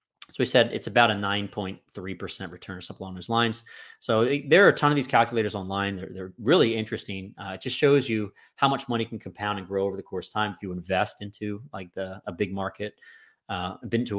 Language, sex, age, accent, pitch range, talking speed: English, male, 30-49, American, 100-120 Hz, 235 wpm